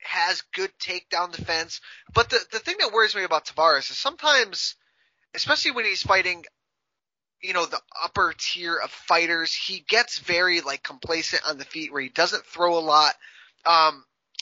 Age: 20-39